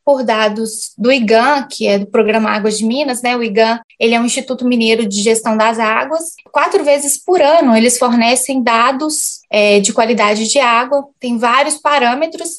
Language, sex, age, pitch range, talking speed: Portuguese, female, 20-39, 225-285 Hz, 180 wpm